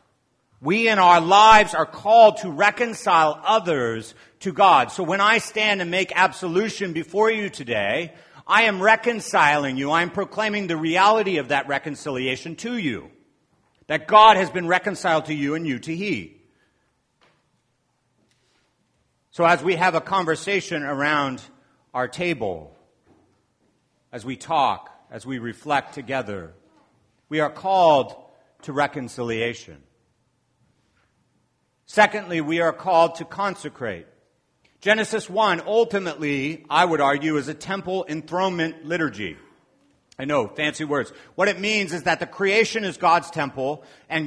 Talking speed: 135 wpm